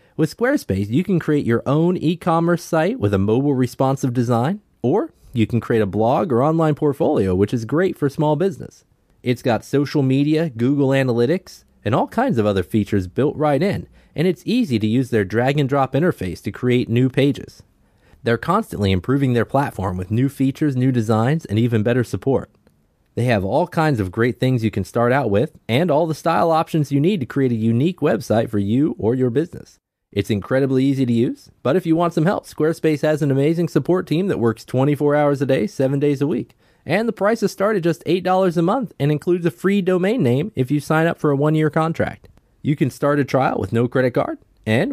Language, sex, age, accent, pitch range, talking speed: English, male, 30-49, American, 115-155 Hz, 210 wpm